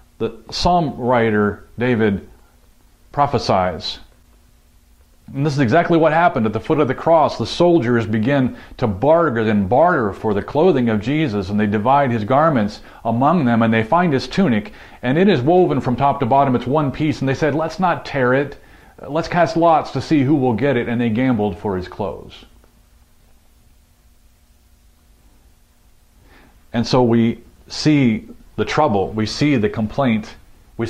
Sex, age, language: male, 40-59, English